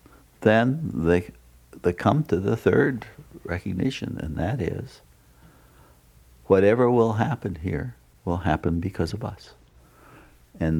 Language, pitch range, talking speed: English, 75-95 Hz, 115 wpm